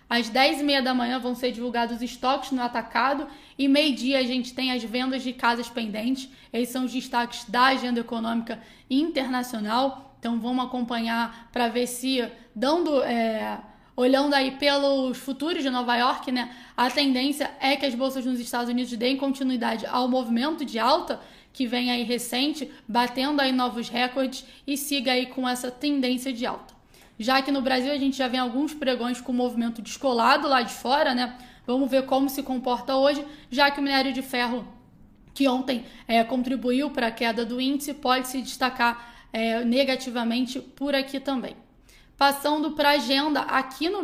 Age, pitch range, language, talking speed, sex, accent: 10-29, 245-270 Hz, Portuguese, 175 wpm, female, Brazilian